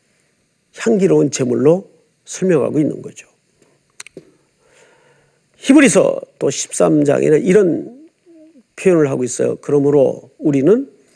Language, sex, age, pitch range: Korean, male, 50-69, 155-245 Hz